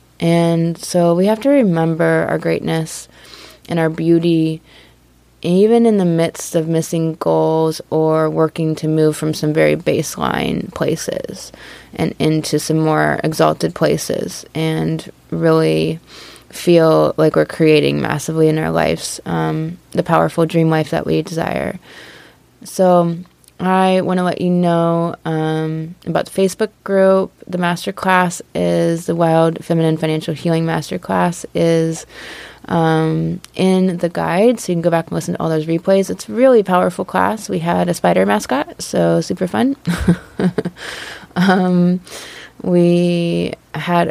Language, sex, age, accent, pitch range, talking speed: English, female, 20-39, American, 155-180 Hz, 140 wpm